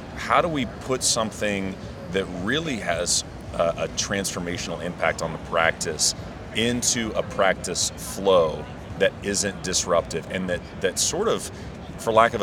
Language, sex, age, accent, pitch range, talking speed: English, male, 30-49, American, 85-105 Hz, 140 wpm